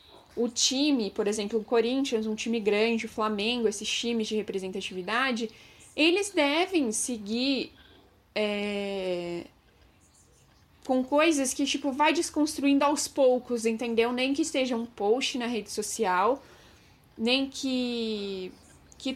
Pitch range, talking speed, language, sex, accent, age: 215-270 Hz, 120 wpm, Portuguese, female, Brazilian, 10-29